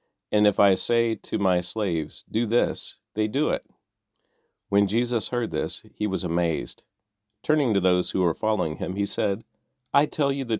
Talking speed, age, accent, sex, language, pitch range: 180 wpm, 40-59, American, male, English, 90-110 Hz